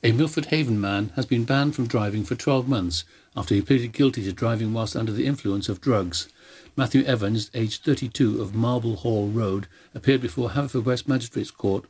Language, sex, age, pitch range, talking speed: English, male, 60-79, 105-130 Hz, 190 wpm